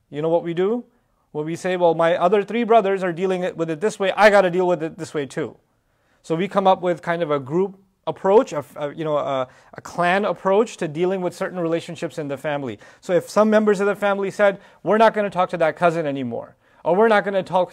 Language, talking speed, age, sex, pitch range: English, 260 wpm, 30-49, male, 155-195 Hz